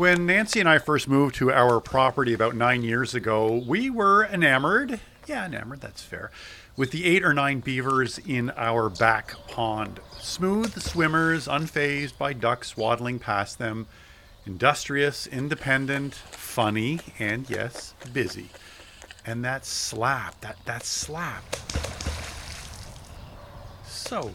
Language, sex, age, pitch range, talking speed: English, male, 40-59, 110-140 Hz, 125 wpm